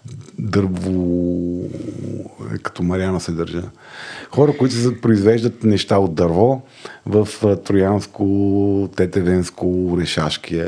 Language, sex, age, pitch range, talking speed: Bulgarian, male, 50-69, 85-110 Hz, 90 wpm